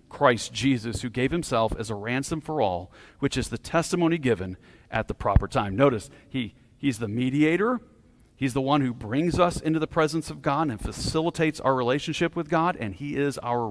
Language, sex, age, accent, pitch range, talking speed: English, male, 40-59, American, 115-155 Hz, 195 wpm